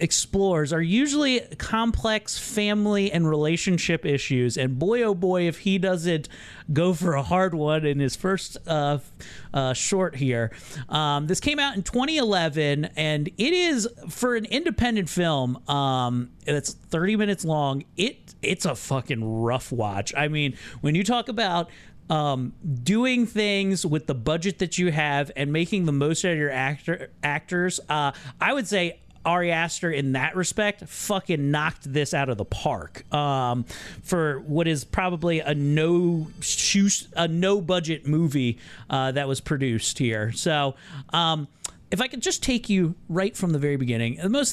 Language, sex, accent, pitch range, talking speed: English, male, American, 130-180 Hz, 160 wpm